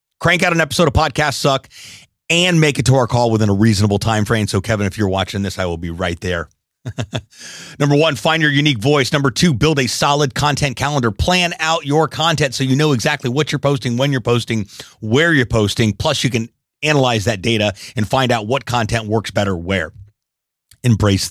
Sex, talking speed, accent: male, 210 wpm, American